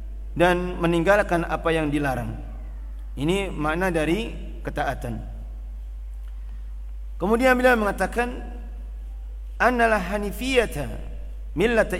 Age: 50-69